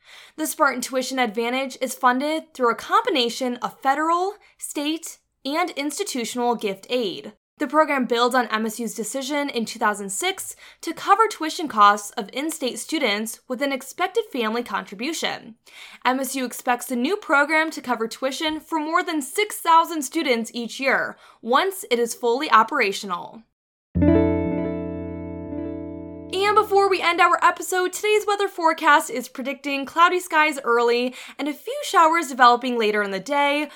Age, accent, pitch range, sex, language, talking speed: 20-39, American, 235-325 Hz, female, English, 140 wpm